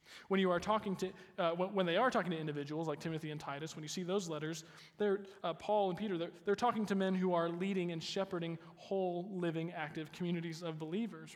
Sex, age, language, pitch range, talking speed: male, 20-39, English, 150-175 Hz, 220 wpm